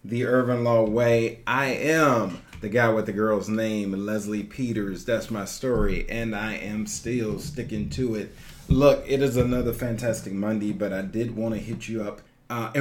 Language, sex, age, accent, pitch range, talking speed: English, male, 40-59, American, 115-150 Hz, 185 wpm